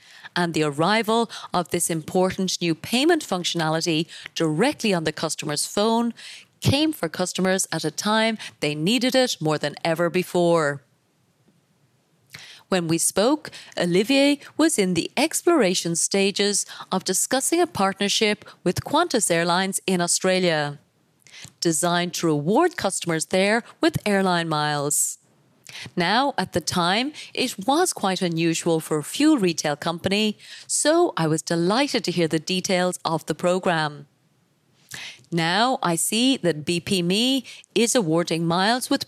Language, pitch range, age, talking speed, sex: English, 165-215 Hz, 30-49, 135 wpm, female